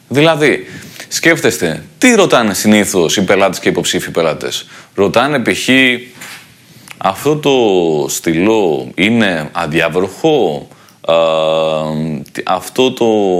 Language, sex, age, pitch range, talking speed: Greek, male, 30-49, 105-160 Hz, 90 wpm